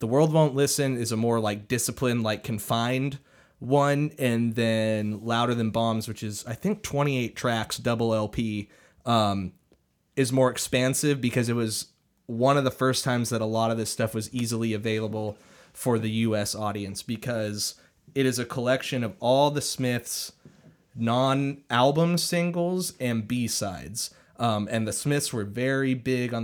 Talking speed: 165 wpm